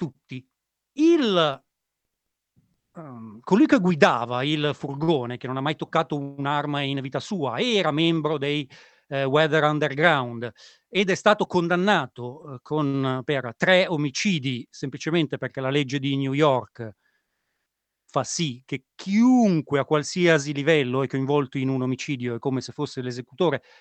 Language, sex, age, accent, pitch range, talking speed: Italian, male, 40-59, native, 135-185 Hz, 140 wpm